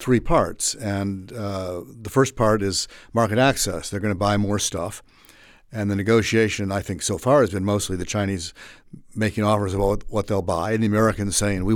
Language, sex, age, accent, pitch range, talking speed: English, male, 60-79, American, 95-110 Hz, 200 wpm